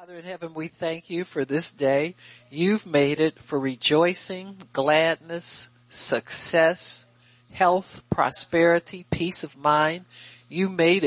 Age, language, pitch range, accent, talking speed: 60-79, English, 130-170 Hz, American, 125 wpm